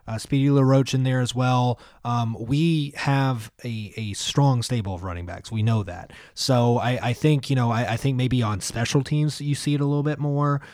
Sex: male